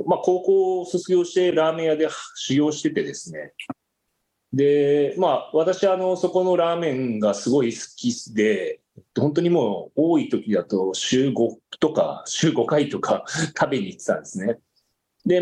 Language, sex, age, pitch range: Japanese, male, 30-49, 125-185 Hz